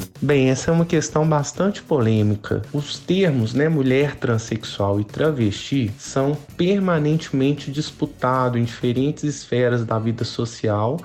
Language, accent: Portuguese, Brazilian